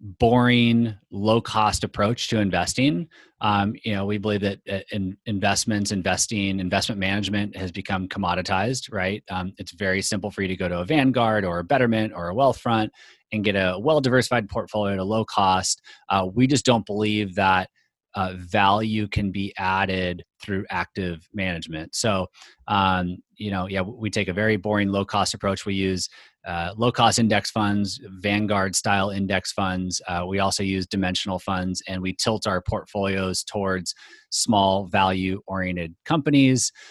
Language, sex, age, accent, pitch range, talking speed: English, male, 30-49, American, 95-110 Hz, 160 wpm